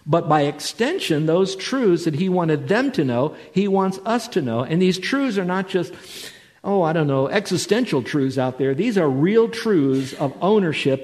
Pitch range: 135-175 Hz